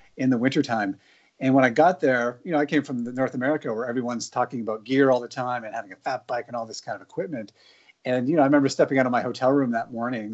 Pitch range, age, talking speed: 120-145 Hz, 40-59, 280 wpm